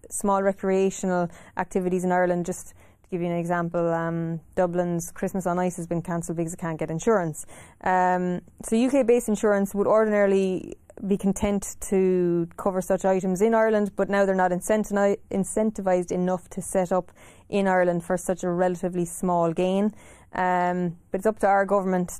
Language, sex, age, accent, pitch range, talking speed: English, female, 20-39, Irish, 180-200 Hz, 170 wpm